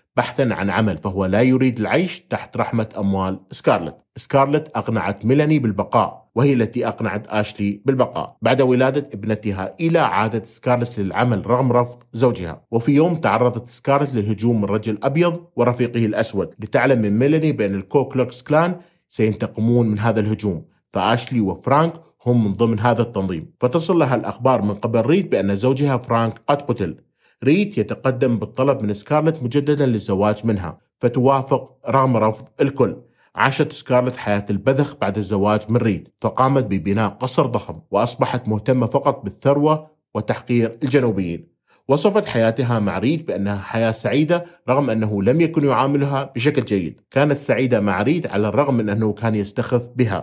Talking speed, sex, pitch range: 145 wpm, male, 110-135 Hz